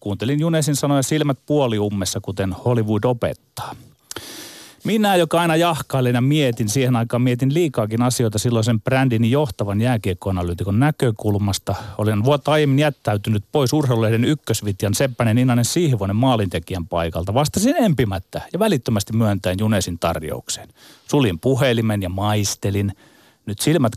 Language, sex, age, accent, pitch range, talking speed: Finnish, male, 30-49, native, 100-140 Hz, 120 wpm